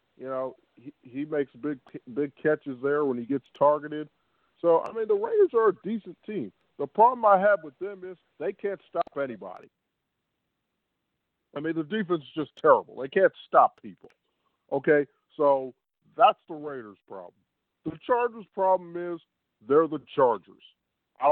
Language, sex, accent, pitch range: English, male, American, 125-155 Hz